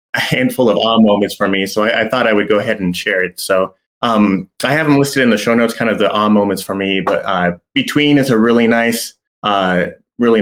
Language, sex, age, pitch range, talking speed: English, male, 20-39, 100-115 Hz, 260 wpm